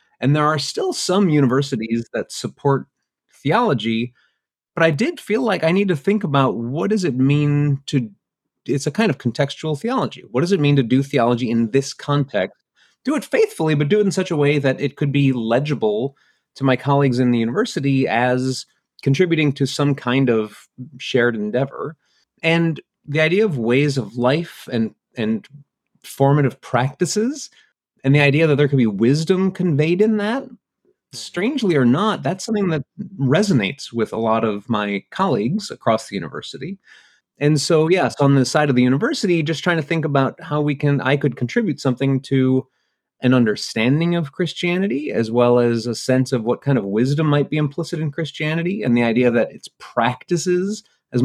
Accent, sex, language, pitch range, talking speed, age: American, male, English, 130-175 Hz, 180 wpm, 30-49